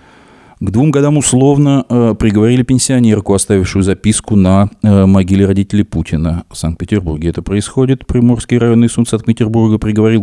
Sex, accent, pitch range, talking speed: male, native, 85-105 Hz, 135 wpm